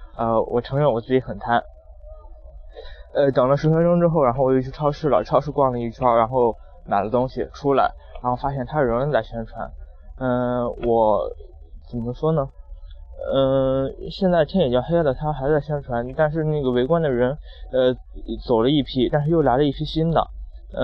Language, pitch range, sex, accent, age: Chinese, 115-145 Hz, male, native, 20-39